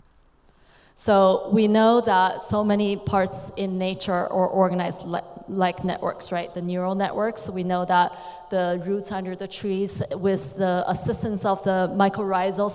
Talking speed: 145 wpm